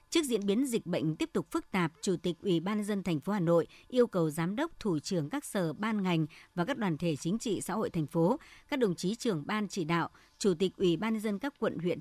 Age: 60-79